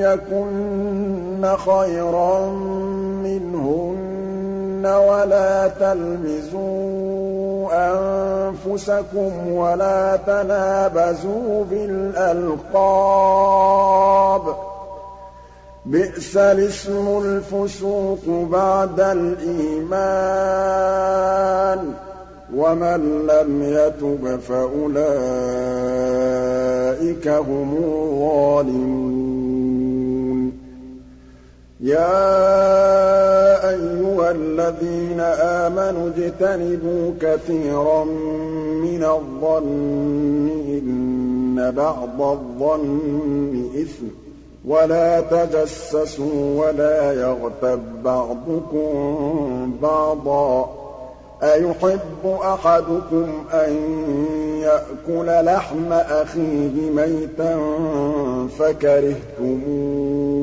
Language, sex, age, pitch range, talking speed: Arabic, male, 50-69, 145-195 Hz, 45 wpm